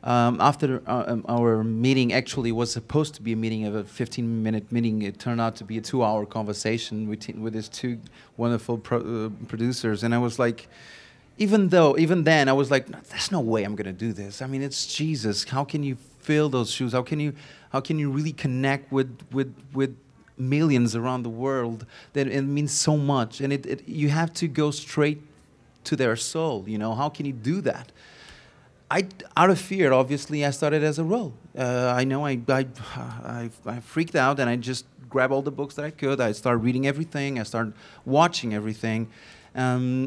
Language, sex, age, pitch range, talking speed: English, male, 30-49, 115-140 Hz, 210 wpm